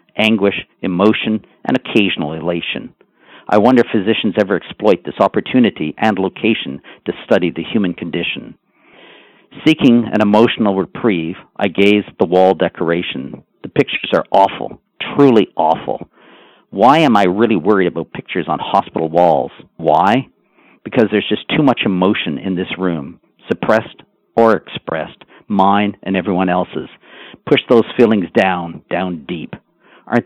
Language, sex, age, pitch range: English, male, 50-69, 95-115 Hz